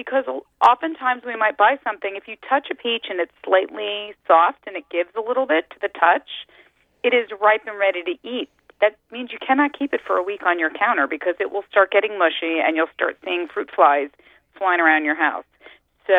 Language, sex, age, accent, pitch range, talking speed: English, female, 40-59, American, 155-215 Hz, 220 wpm